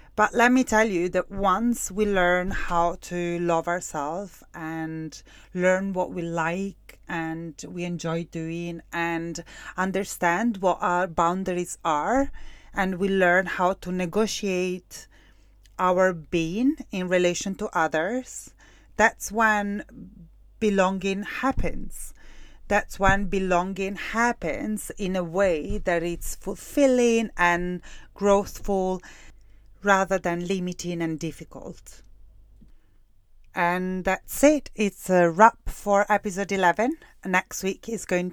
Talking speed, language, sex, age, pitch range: 115 wpm, English, female, 30-49, 175-210 Hz